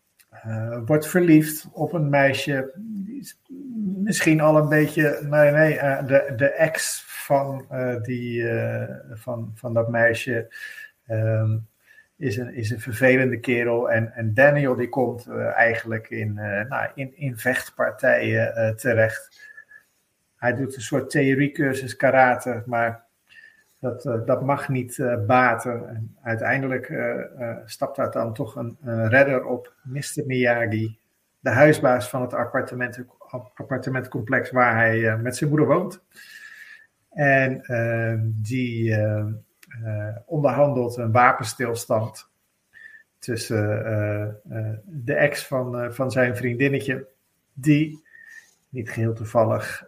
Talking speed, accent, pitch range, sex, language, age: 130 wpm, Dutch, 115-145 Hz, male, Dutch, 50-69